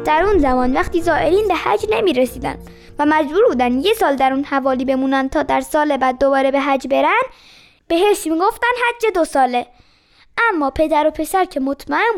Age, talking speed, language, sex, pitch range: 20-39, 185 wpm, Persian, female, 270-365 Hz